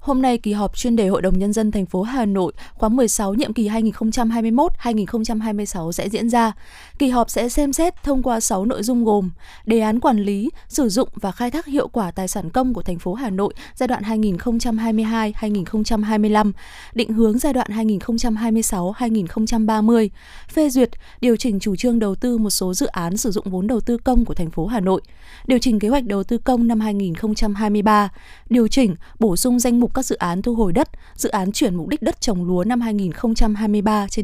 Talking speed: 200 wpm